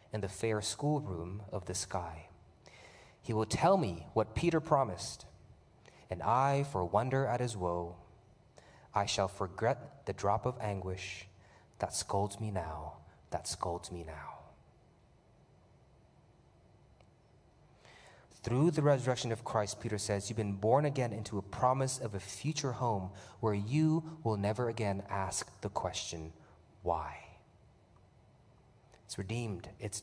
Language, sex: English, male